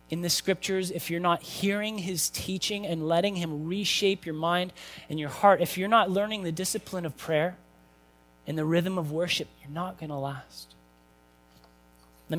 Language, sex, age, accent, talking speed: English, male, 30-49, American, 180 wpm